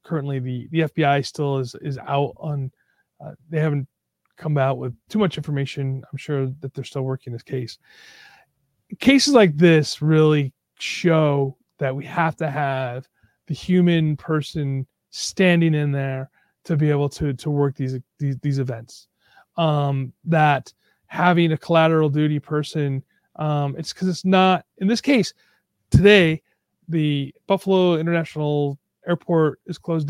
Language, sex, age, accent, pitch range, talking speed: English, male, 30-49, American, 130-160 Hz, 150 wpm